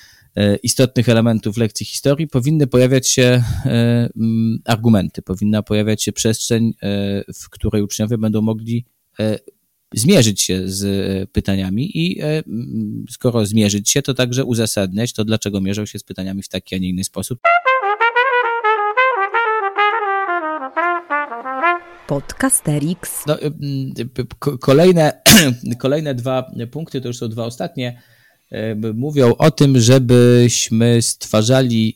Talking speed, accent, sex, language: 105 wpm, native, male, Polish